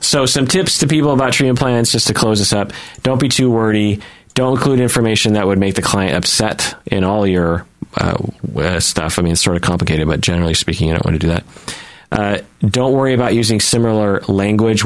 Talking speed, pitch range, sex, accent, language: 220 wpm, 90-115 Hz, male, American, English